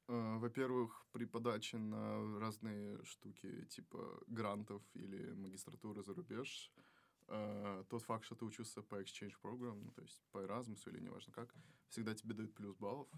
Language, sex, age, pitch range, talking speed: Russian, male, 20-39, 105-120 Hz, 145 wpm